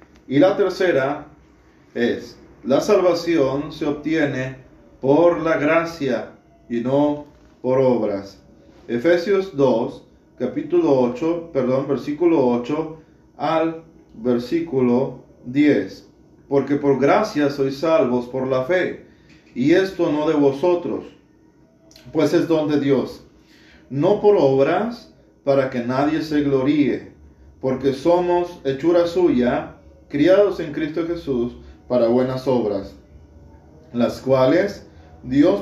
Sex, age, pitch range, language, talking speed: male, 40-59, 120-160 Hz, Spanish, 110 wpm